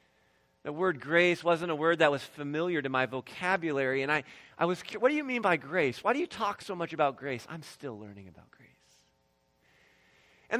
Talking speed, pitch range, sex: 205 wpm, 140-225 Hz, male